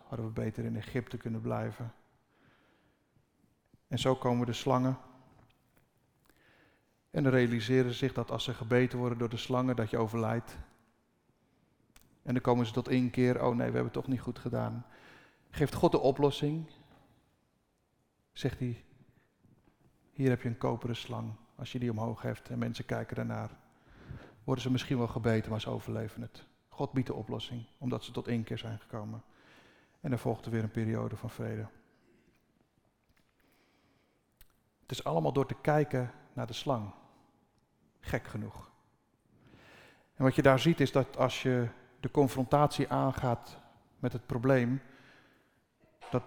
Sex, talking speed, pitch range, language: male, 155 wpm, 115-130 Hz, Dutch